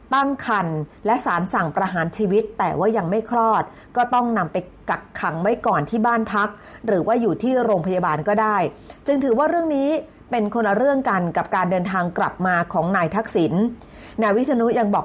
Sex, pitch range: female, 185-240 Hz